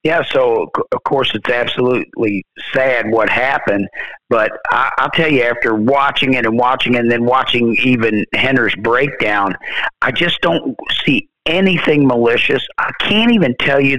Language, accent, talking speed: English, American, 155 wpm